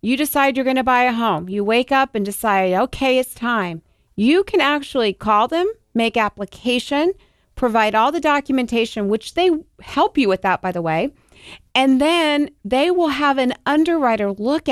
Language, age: English, 40-59